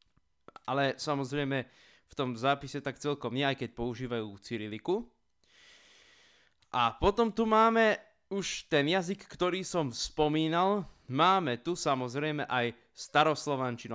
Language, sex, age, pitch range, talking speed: Slovak, male, 20-39, 125-160 Hz, 115 wpm